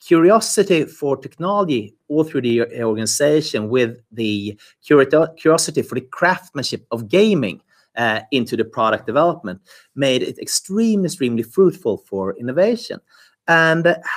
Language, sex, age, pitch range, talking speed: English, male, 30-49, 125-200 Hz, 125 wpm